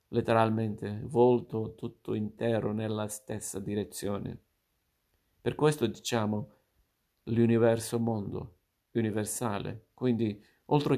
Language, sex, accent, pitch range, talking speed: Italian, male, native, 105-120 Hz, 80 wpm